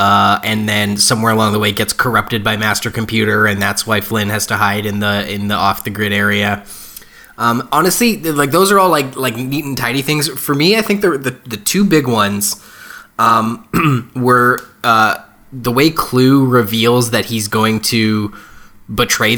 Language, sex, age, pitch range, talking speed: English, male, 20-39, 105-135 Hz, 190 wpm